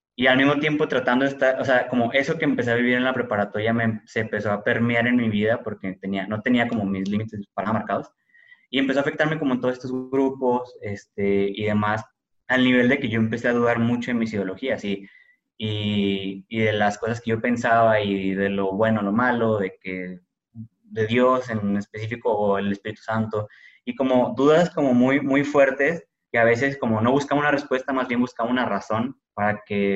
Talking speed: 210 wpm